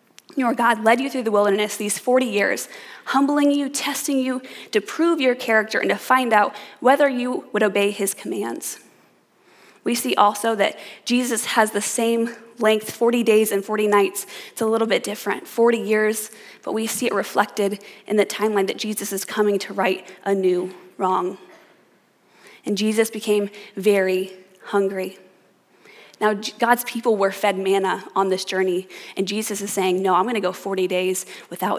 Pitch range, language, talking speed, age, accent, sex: 195-225 Hz, English, 170 wpm, 20-39, American, female